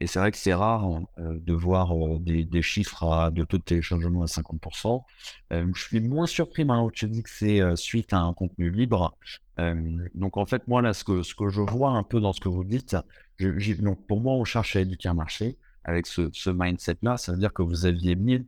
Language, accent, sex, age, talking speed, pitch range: French, French, male, 50-69, 250 wpm, 85-105 Hz